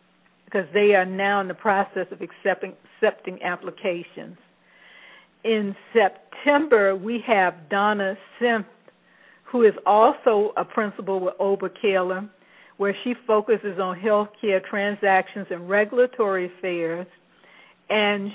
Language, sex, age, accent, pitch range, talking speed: English, female, 60-79, American, 185-215 Hz, 110 wpm